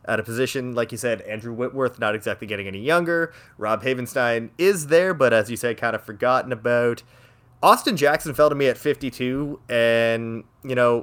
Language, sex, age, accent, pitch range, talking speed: English, male, 20-39, American, 115-135 Hz, 190 wpm